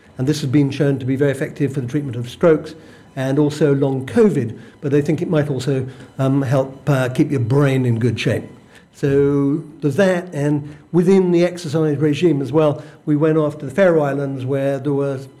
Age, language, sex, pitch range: 60-79, English, male, 140-155 Hz